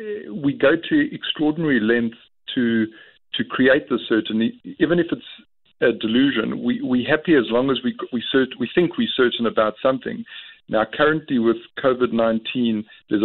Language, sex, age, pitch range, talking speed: English, male, 50-69, 110-145 Hz, 165 wpm